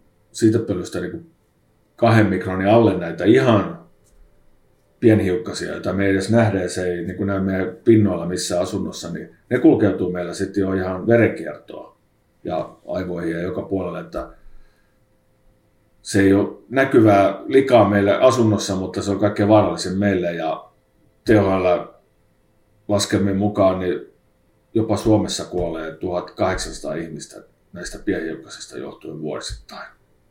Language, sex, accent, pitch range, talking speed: Finnish, male, native, 90-105 Hz, 125 wpm